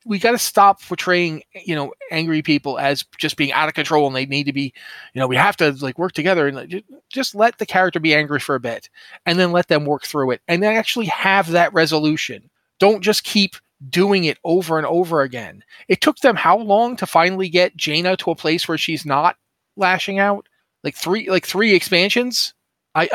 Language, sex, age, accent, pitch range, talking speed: English, male, 30-49, American, 145-185 Hz, 215 wpm